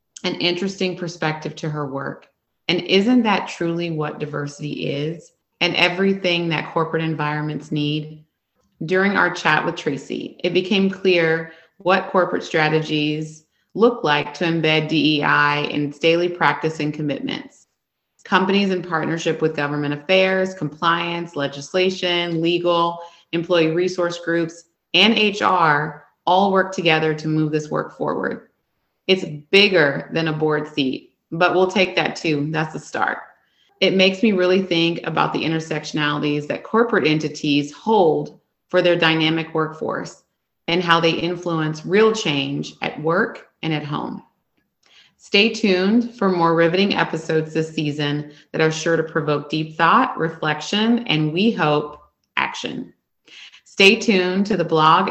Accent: American